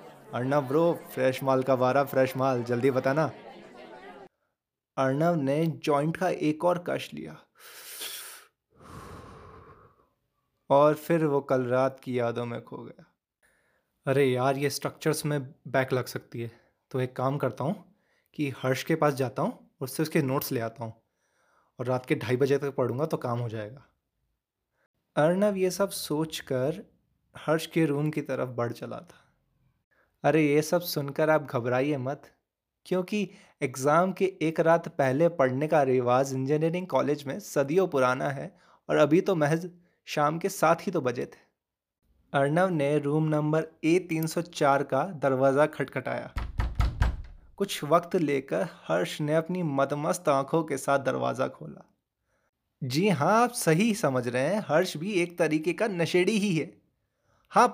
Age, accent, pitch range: 20-39, native, 130-165 Hz